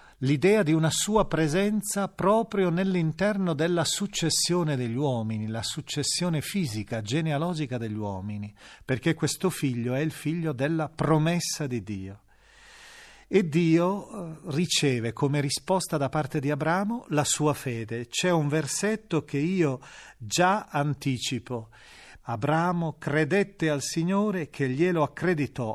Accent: native